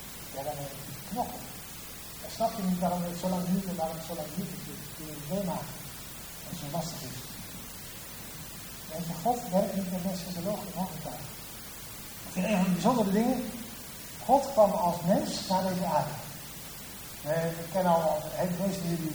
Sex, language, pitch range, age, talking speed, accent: male, Dutch, 155-190 Hz, 60-79, 180 wpm, Dutch